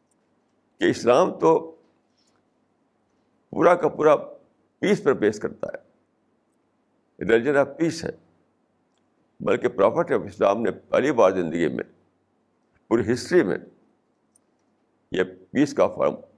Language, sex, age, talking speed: Urdu, male, 60-79, 115 wpm